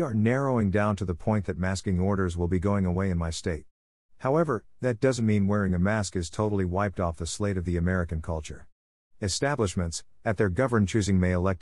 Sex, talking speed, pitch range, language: male, 205 wpm, 85-110 Hz, English